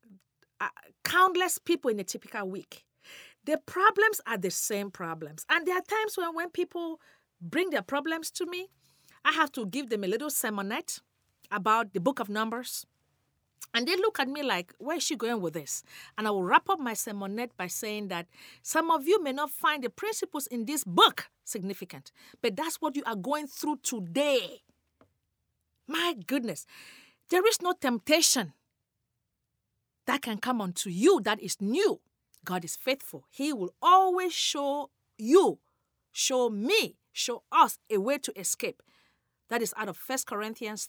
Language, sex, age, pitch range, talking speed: English, female, 40-59, 205-335 Hz, 170 wpm